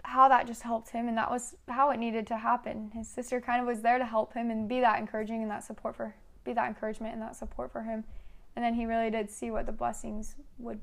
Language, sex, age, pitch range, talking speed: English, female, 10-29, 205-235 Hz, 265 wpm